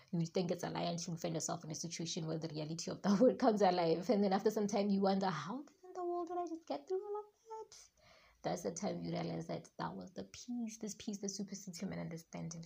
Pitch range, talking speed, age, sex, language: 170-215 Hz, 260 wpm, 20-39, female, English